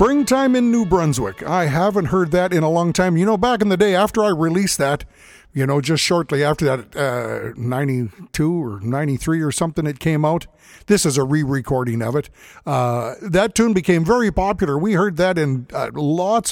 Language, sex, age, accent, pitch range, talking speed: English, male, 50-69, American, 140-180 Hz, 200 wpm